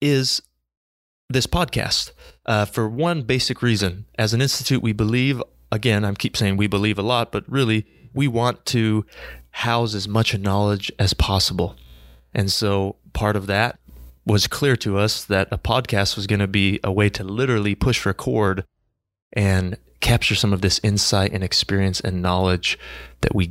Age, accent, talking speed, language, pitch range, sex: 30-49, American, 165 wpm, English, 95-110 Hz, male